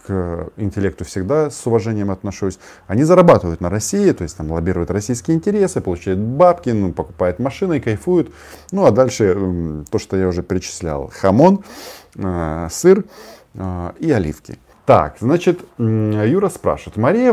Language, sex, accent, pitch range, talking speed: Russian, male, native, 95-145 Hz, 135 wpm